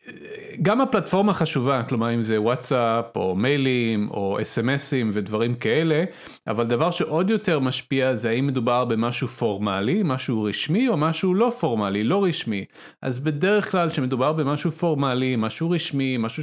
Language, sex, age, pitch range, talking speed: Hebrew, male, 30-49, 115-160 Hz, 150 wpm